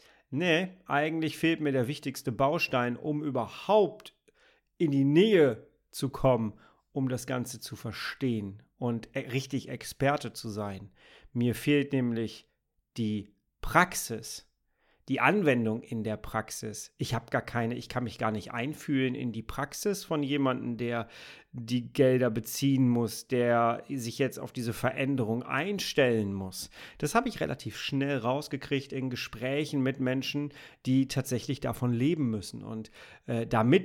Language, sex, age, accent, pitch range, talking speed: German, male, 40-59, German, 115-145 Hz, 140 wpm